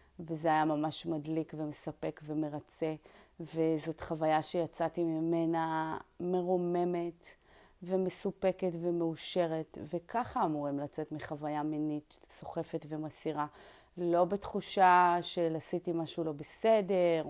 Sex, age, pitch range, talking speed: female, 30-49, 160-190 Hz, 95 wpm